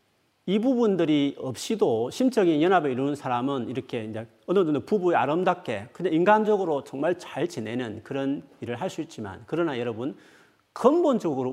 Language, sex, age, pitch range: Korean, male, 40-59, 115-195 Hz